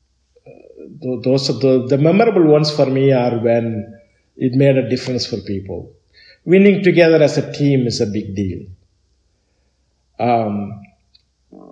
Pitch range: 105-155 Hz